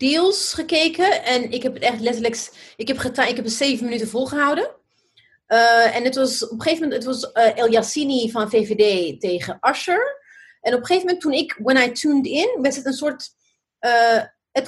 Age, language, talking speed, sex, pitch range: 30-49, Dutch, 210 wpm, female, 225-290 Hz